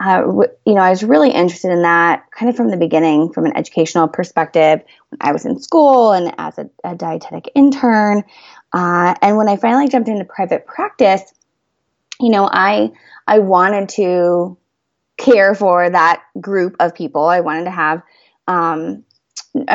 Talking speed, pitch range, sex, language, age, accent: 165 wpm, 170-225 Hz, female, English, 20-39, American